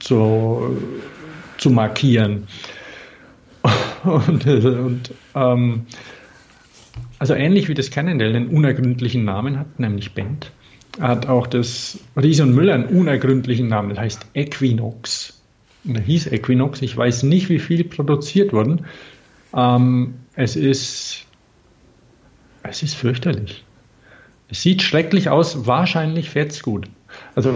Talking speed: 120 wpm